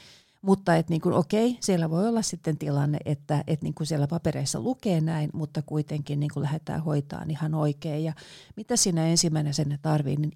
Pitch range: 150-175 Hz